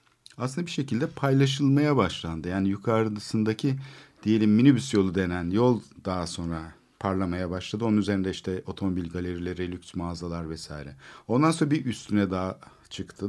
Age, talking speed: 50-69, 135 wpm